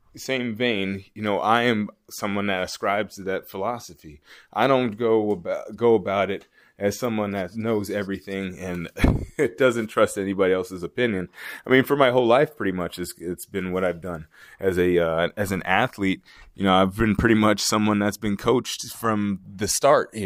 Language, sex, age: English, male, 20-39